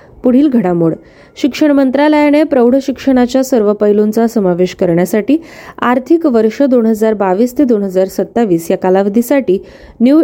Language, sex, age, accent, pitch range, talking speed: Marathi, female, 20-39, native, 195-270 Hz, 110 wpm